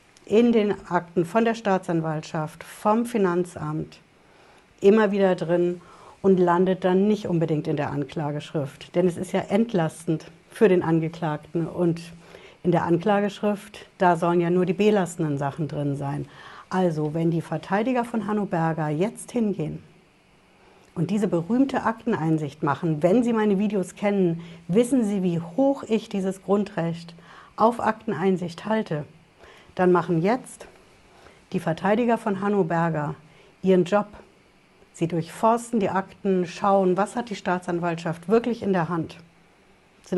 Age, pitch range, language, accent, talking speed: 60-79, 165-205 Hz, German, German, 140 wpm